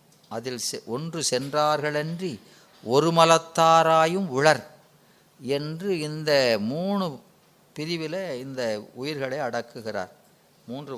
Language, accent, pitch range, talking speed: Tamil, native, 135-175 Hz, 75 wpm